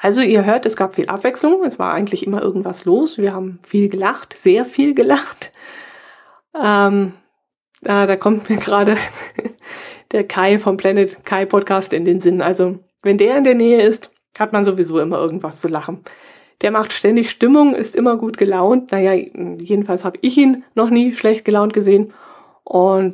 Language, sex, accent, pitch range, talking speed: German, female, German, 185-220 Hz, 175 wpm